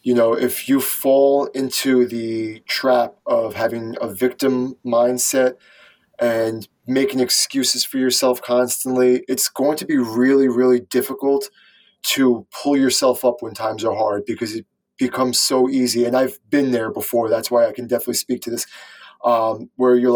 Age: 20-39